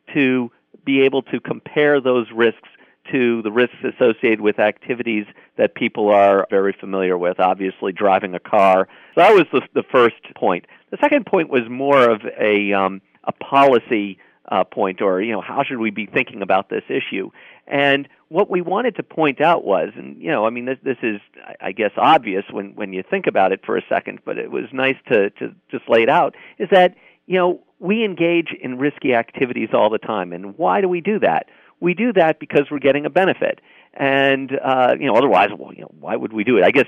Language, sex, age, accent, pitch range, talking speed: English, male, 50-69, American, 105-145 Hz, 215 wpm